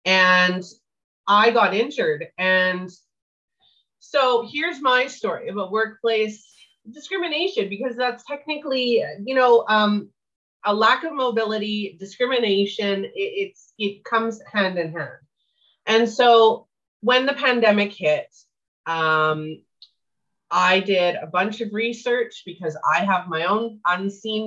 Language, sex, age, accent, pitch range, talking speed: English, female, 30-49, American, 180-240 Hz, 120 wpm